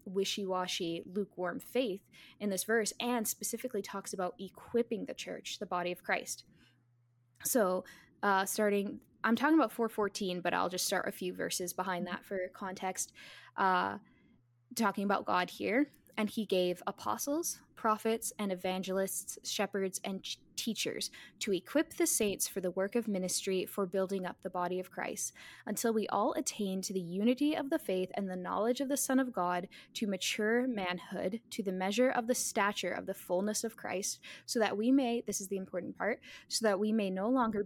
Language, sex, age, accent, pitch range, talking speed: English, female, 10-29, American, 185-230 Hz, 180 wpm